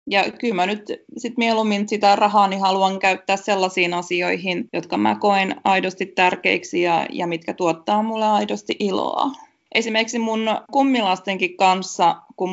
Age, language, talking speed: 20-39, Finnish, 145 wpm